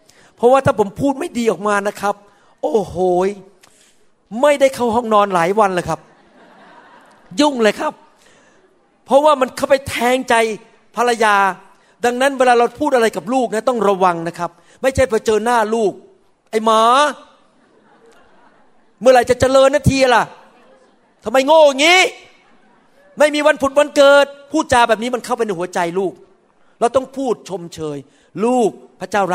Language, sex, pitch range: Thai, male, 205-275 Hz